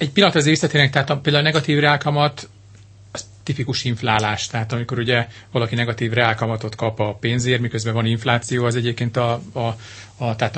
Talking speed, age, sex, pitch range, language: 175 wpm, 40-59, male, 105-120 Hz, Hungarian